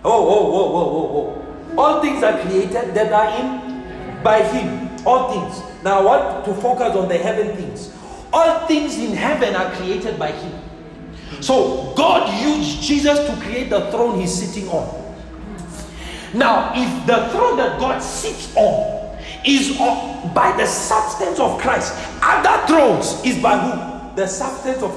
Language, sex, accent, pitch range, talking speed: English, male, South African, 190-295 Hz, 175 wpm